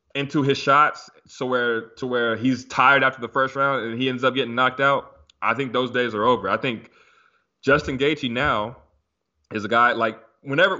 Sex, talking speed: male, 200 wpm